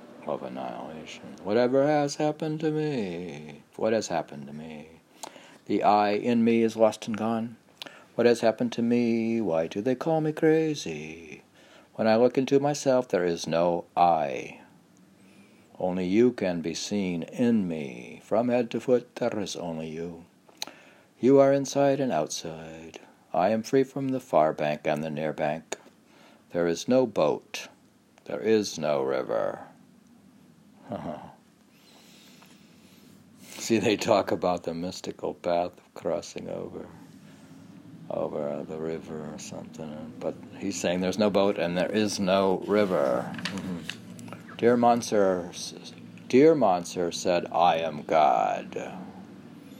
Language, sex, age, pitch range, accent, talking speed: English, male, 60-79, 85-125 Hz, American, 140 wpm